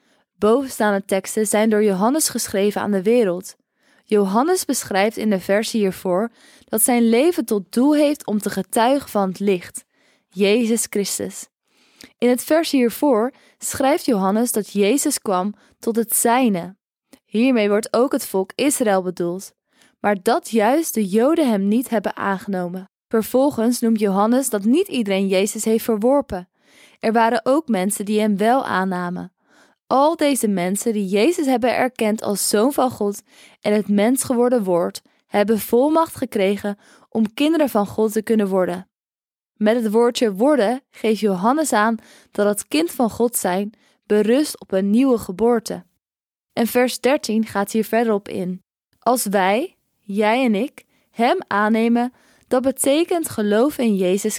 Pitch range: 205-255 Hz